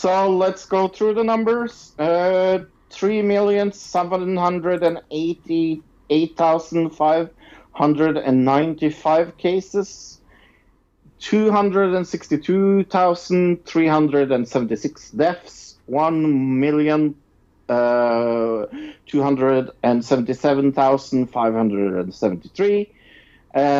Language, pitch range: English, 115-165 Hz